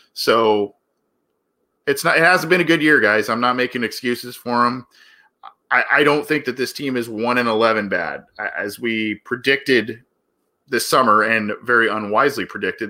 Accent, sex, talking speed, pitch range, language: American, male, 170 wpm, 110-145 Hz, English